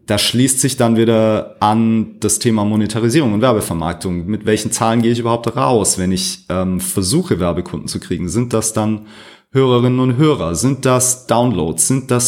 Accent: German